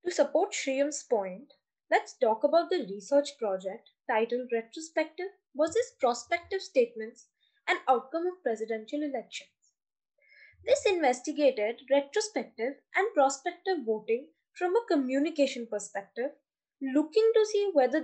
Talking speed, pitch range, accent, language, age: 115 wpm, 245-365 Hz, Indian, English, 10-29